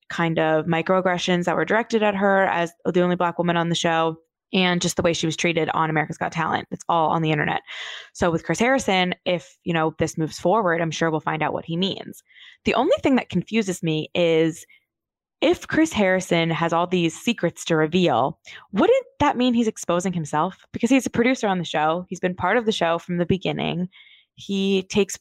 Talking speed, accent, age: 215 wpm, American, 20-39